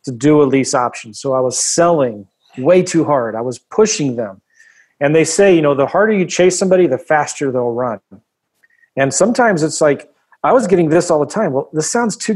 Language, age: English, 40-59